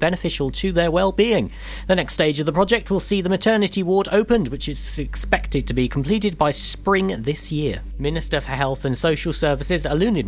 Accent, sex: British, male